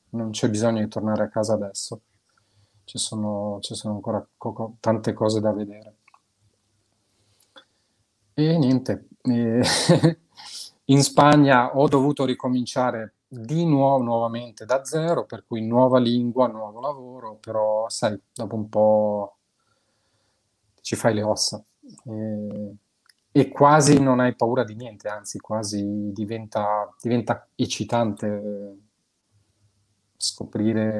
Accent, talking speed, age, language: native, 110 wpm, 30-49, Italian